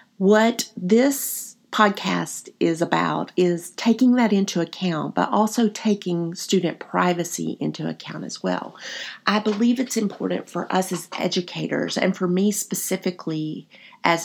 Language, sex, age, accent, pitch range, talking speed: English, female, 50-69, American, 165-220 Hz, 135 wpm